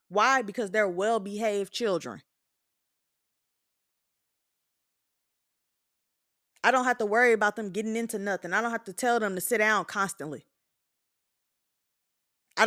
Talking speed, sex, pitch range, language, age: 125 wpm, female, 205-265 Hz, English, 20-39